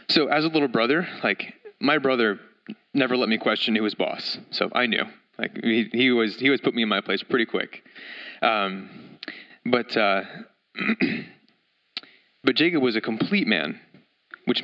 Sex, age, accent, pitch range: male, 30-49, American, 105-130 Hz